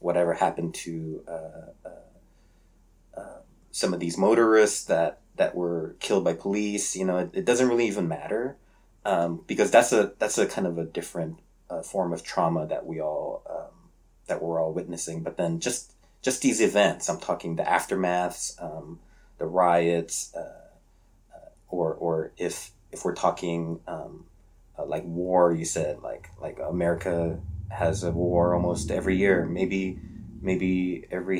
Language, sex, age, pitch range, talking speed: English, male, 30-49, 85-95 Hz, 160 wpm